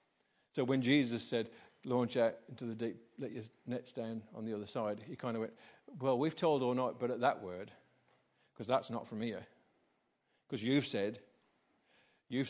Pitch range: 115-155 Hz